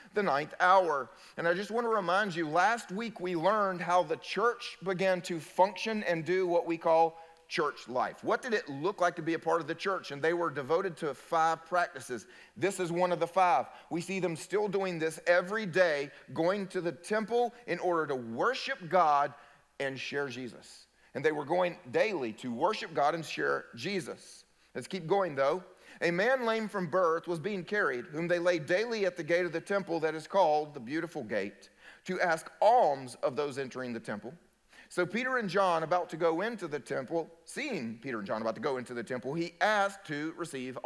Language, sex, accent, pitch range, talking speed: English, male, American, 160-195 Hz, 210 wpm